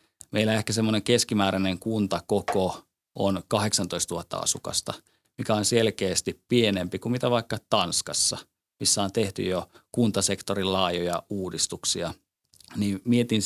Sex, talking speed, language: male, 110 wpm, Finnish